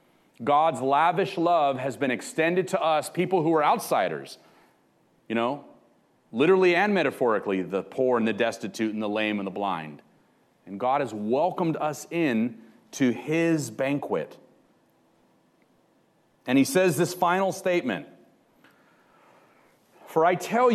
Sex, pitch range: male, 130-175 Hz